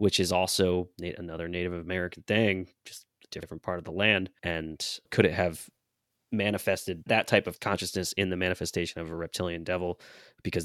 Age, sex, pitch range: 20-39, male, 90-120 Hz